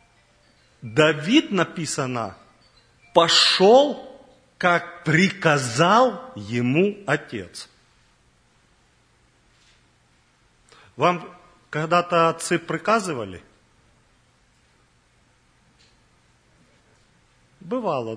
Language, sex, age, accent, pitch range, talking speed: Russian, male, 40-59, native, 120-180 Hz, 40 wpm